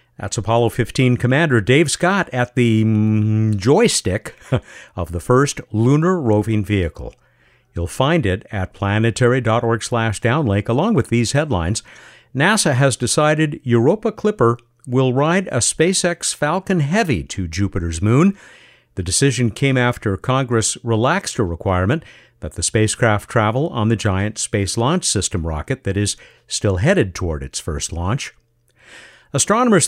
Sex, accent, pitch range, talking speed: male, American, 100-140 Hz, 140 wpm